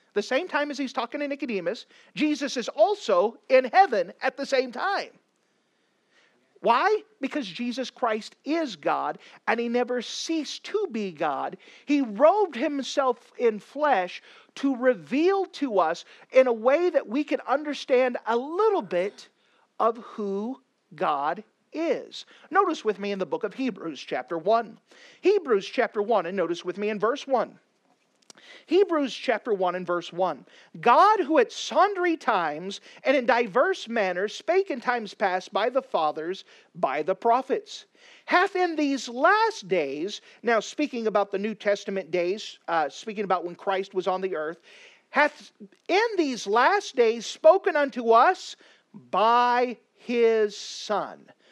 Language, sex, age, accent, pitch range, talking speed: English, male, 40-59, American, 215-320 Hz, 150 wpm